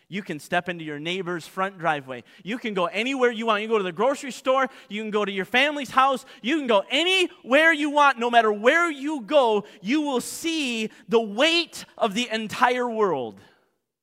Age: 30-49